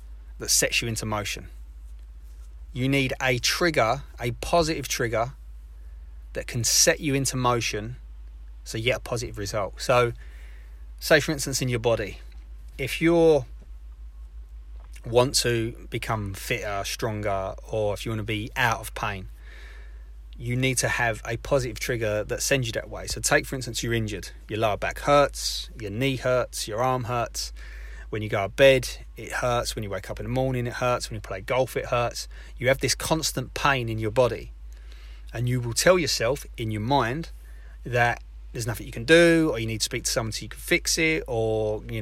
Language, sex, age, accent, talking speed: English, male, 30-49, British, 190 wpm